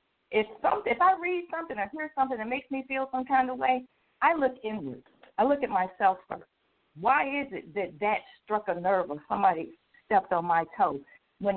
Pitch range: 205-275 Hz